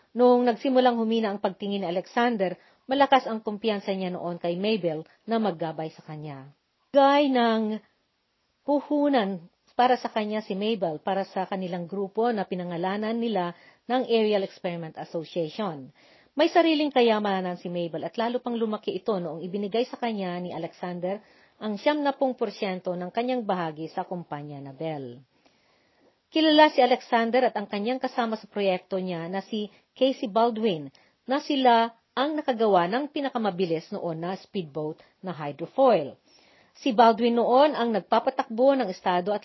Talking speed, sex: 145 wpm, female